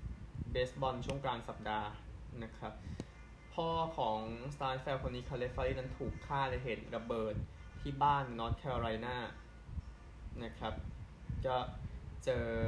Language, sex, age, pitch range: Thai, male, 20-39, 100-130 Hz